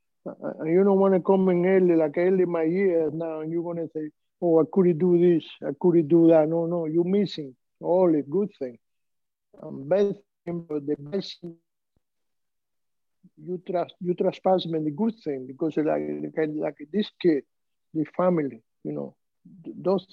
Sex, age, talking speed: male, 60-79, 175 wpm